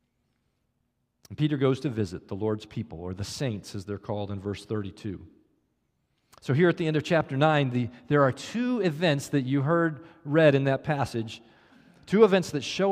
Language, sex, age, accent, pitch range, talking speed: English, male, 40-59, American, 120-165 Hz, 180 wpm